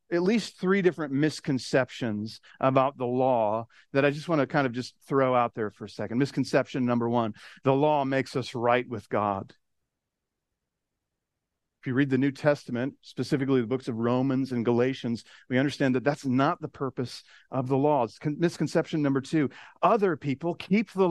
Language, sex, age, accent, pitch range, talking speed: English, male, 50-69, American, 120-150 Hz, 175 wpm